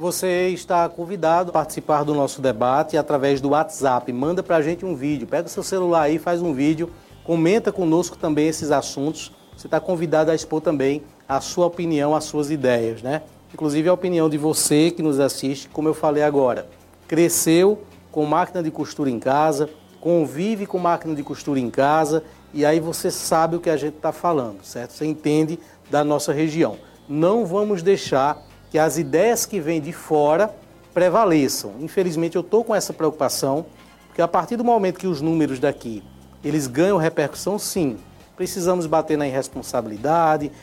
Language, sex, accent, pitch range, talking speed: Portuguese, male, Brazilian, 150-185 Hz, 175 wpm